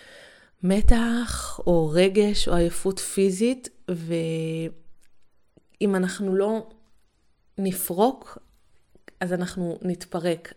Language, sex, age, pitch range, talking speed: Hebrew, female, 20-39, 175-210 Hz, 75 wpm